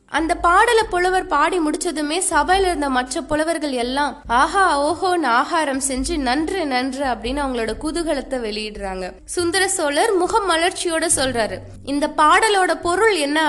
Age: 20-39